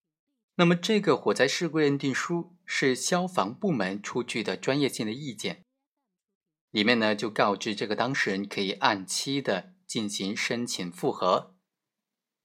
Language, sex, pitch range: Chinese, male, 125-180 Hz